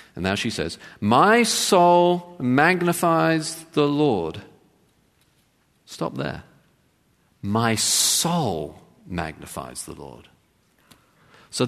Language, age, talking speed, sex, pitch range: English, 50-69, 85 wpm, male, 100-165 Hz